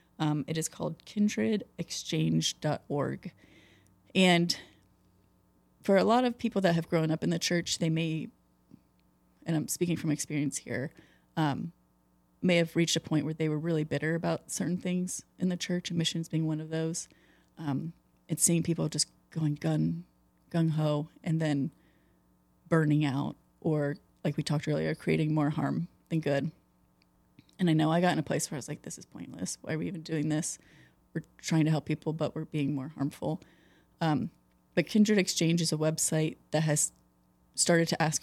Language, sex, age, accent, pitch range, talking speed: English, female, 30-49, American, 140-170 Hz, 180 wpm